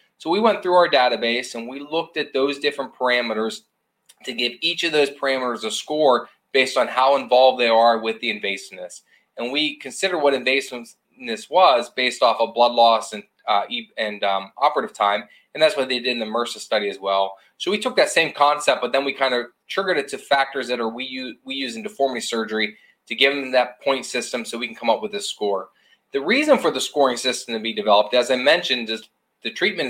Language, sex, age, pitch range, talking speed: English, male, 20-39, 115-140 Hz, 225 wpm